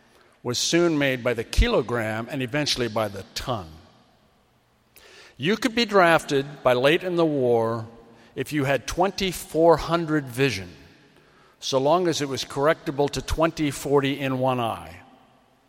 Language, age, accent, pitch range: English, 50-69, American, 125-155 Hz